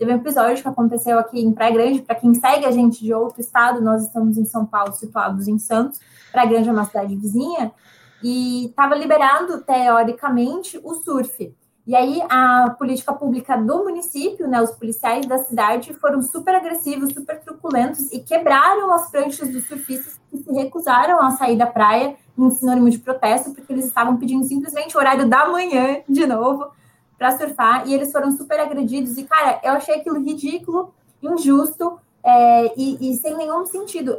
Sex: female